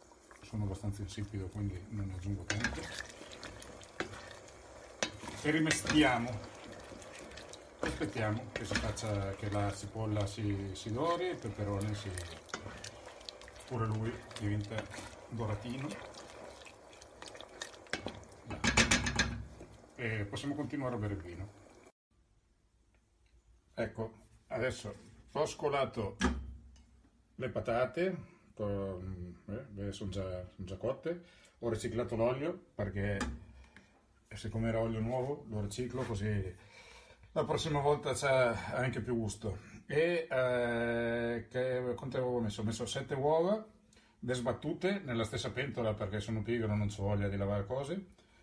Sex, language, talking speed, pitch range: male, Italian, 105 wpm, 100-125 Hz